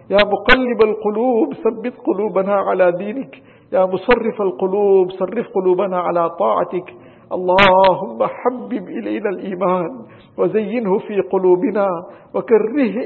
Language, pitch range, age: English, 180-215 Hz, 50-69